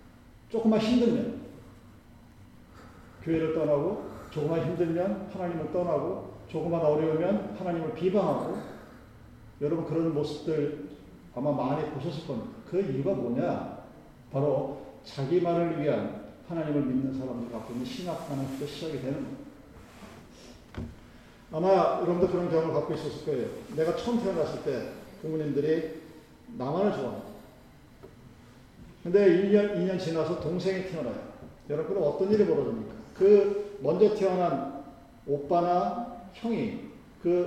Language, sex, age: Korean, male, 40-59